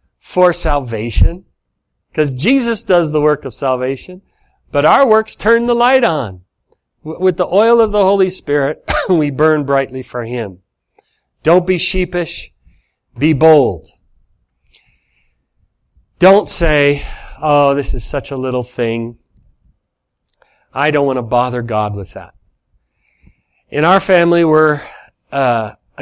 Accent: American